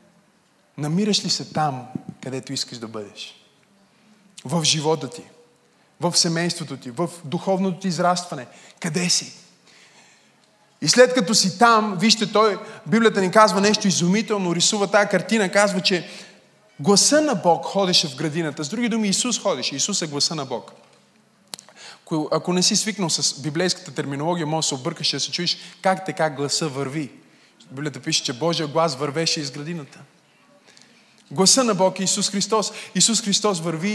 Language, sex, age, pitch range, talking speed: Bulgarian, male, 20-39, 160-205 Hz, 155 wpm